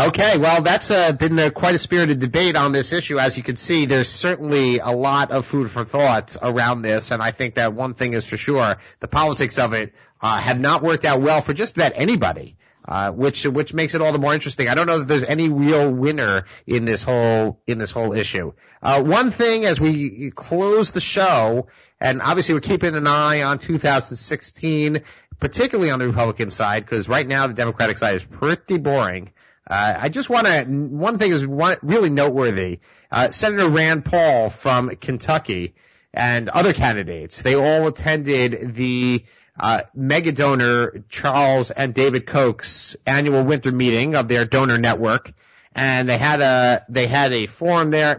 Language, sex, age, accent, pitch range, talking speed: English, male, 30-49, American, 120-155 Hz, 185 wpm